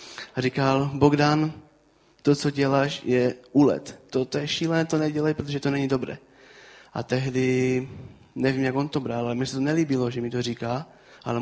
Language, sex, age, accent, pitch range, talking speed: Czech, male, 20-39, native, 125-145 Hz, 175 wpm